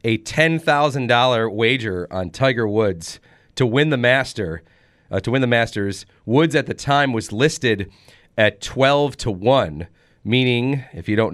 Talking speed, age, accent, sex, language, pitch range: 155 wpm, 30-49, American, male, English, 105-130 Hz